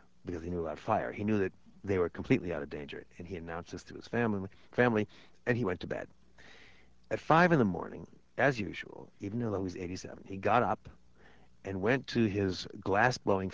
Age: 60-79